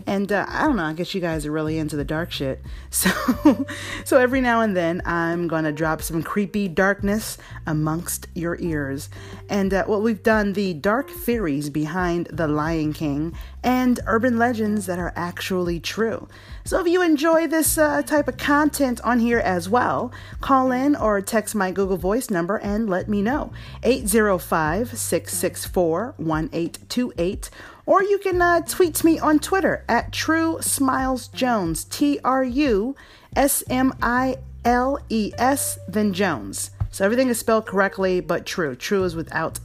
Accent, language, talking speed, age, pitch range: American, English, 165 wpm, 30-49, 165-255 Hz